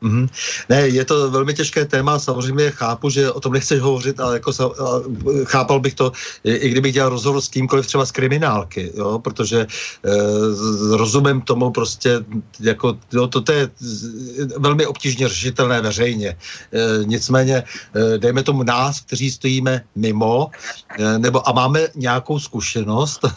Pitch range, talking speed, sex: 110-135 Hz, 150 wpm, male